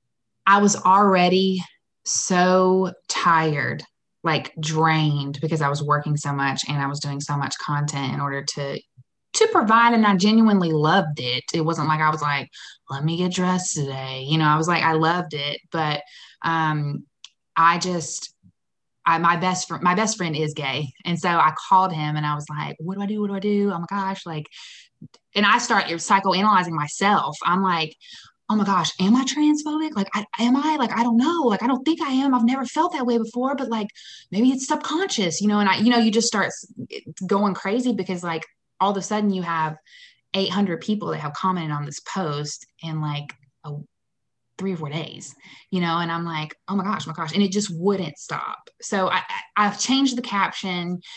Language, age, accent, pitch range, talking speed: English, 20-39, American, 155-205 Hz, 205 wpm